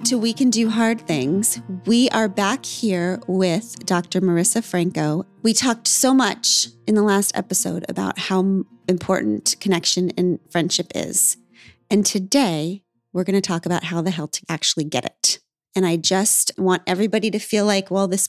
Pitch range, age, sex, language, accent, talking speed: 180-225 Hz, 30-49, female, English, American, 175 wpm